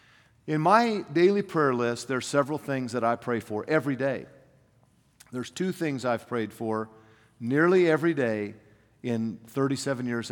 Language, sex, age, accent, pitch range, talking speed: English, male, 50-69, American, 115-160 Hz, 150 wpm